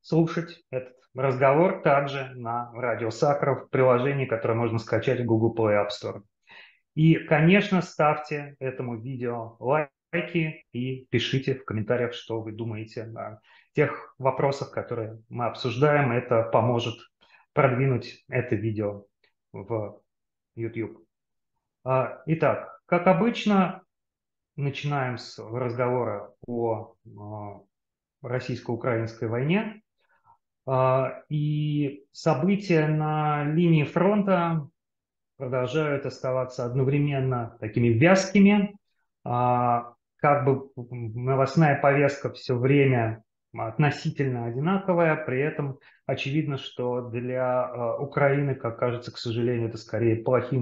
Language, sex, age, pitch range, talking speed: Russian, male, 30-49, 115-150 Hz, 100 wpm